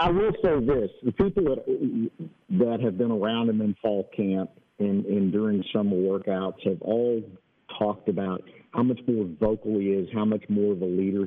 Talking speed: 190 wpm